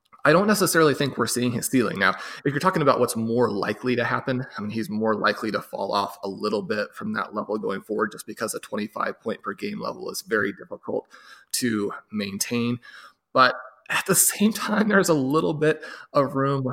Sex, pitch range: male, 115-145 Hz